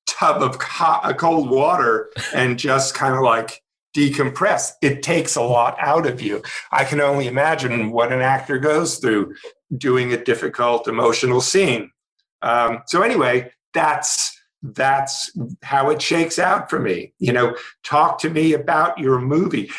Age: 50-69